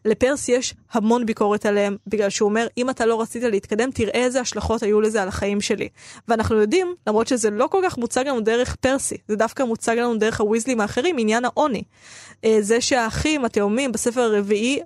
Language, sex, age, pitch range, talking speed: Hebrew, female, 20-39, 220-265 Hz, 185 wpm